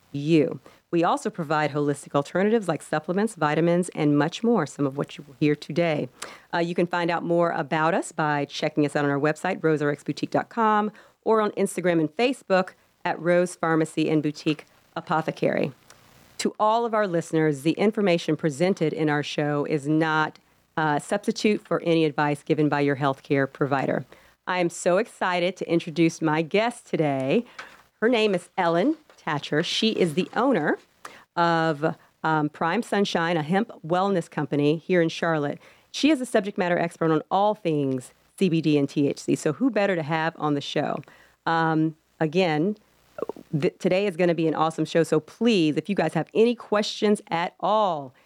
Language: English